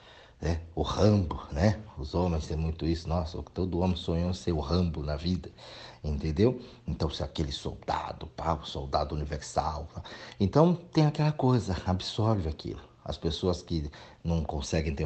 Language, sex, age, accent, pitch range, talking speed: Portuguese, male, 50-69, Brazilian, 80-100 Hz, 165 wpm